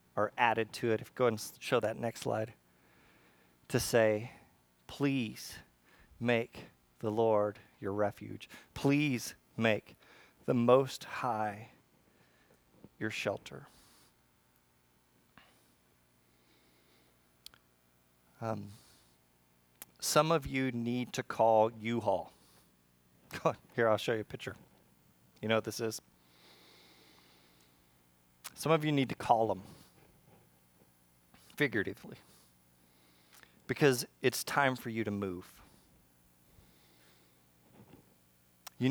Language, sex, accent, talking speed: English, male, American, 95 wpm